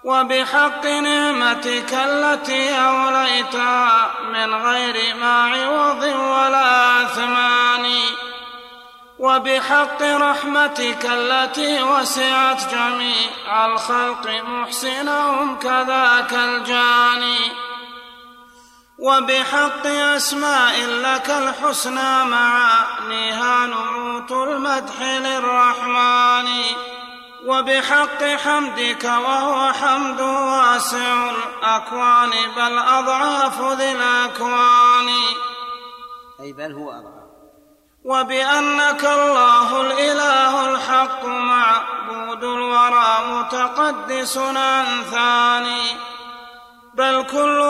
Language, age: Arabic, 30-49